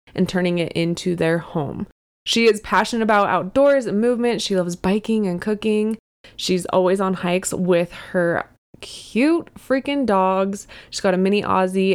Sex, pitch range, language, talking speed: female, 175-225 Hz, English, 160 wpm